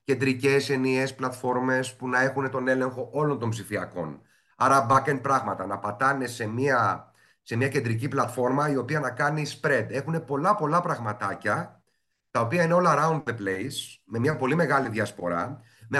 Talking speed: 170 wpm